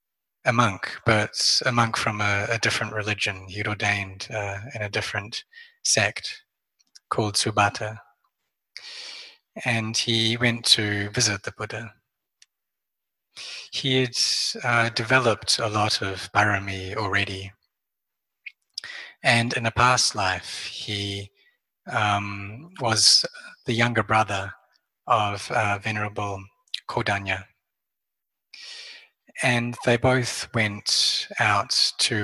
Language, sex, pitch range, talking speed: English, male, 100-115 Hz, 105 wpm